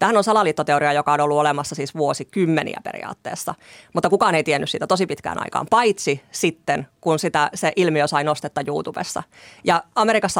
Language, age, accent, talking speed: Finnish, 30-49, native, 175 wpm